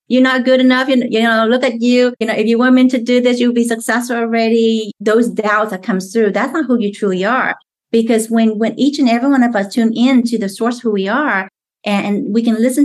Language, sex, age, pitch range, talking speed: English, female, 40-59, 205-245 Hz, 250 wpm